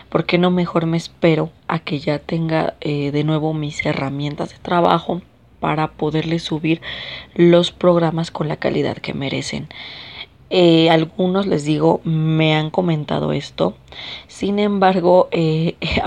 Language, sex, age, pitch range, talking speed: Spanish, female, 30-49, 155-175 Hz, 140 wpm